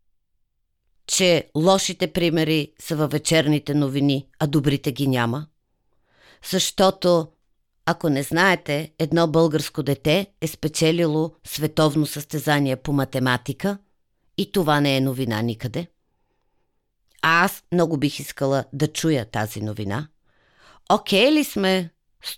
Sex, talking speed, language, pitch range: female, 115 wpm, Bulgarian, 145-195 Hz